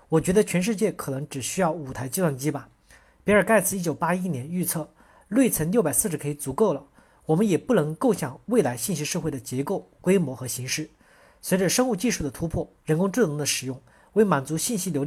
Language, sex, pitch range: Chinese, male, 145-205 Hz